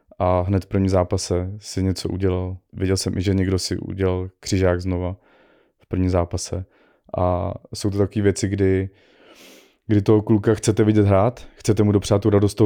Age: 20-39